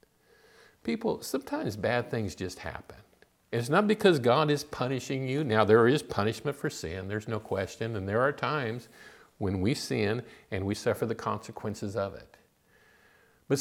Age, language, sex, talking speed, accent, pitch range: 50-69, English, male, 165 wpm, American, 105-140 Hz